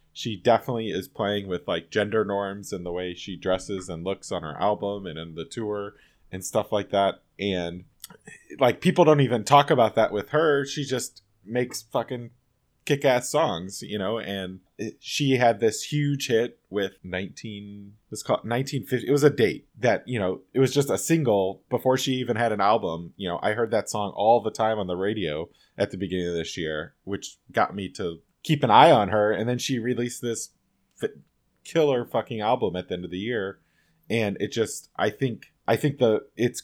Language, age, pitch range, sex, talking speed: English, 20-39, 95-125 Hz, male, 205 wpm